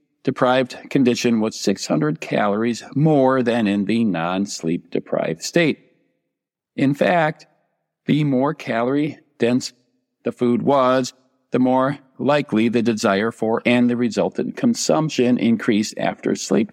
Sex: male